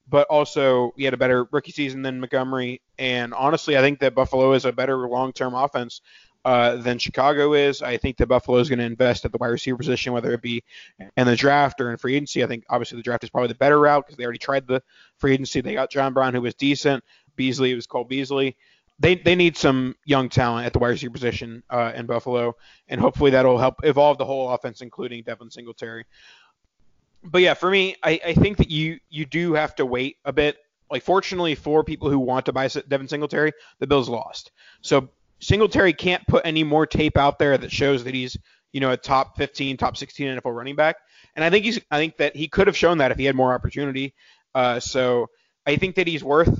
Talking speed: 230 wpm